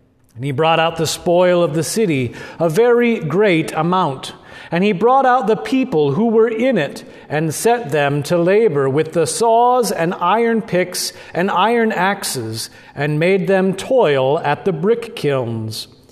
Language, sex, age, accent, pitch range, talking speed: English, male, 40-59, American, 145-220 Hz, 170 wpm